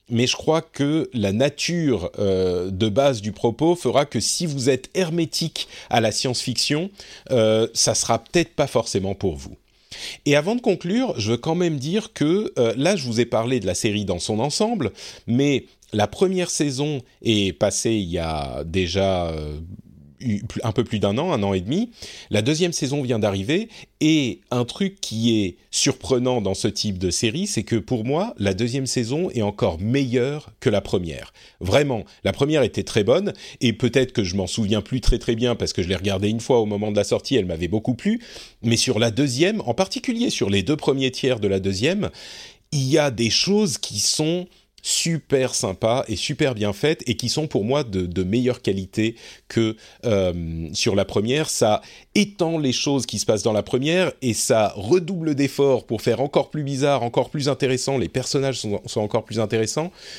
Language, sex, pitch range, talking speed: French, male, 105-150 Hz, 200 wpm